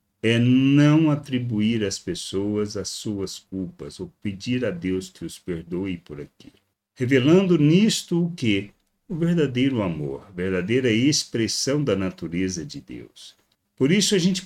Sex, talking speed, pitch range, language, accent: male, 145 wpm, 95-135 Hz, Portuguese, Brazilian